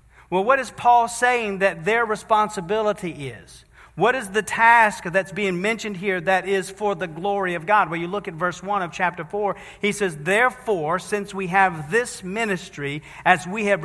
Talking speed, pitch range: 190 wpm, 185-225 Hz